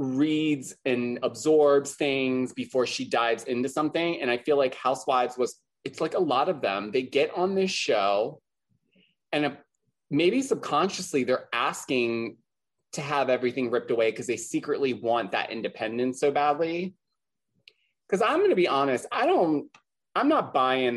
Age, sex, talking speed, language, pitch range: 30-49, male, 155 wpm, English, 125-170 Hz